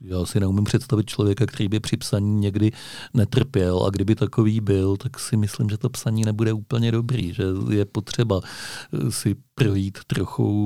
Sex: male